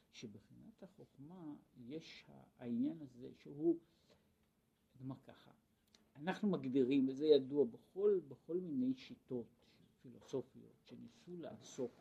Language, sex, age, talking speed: Hebrew, male, 50-69, 95 wpm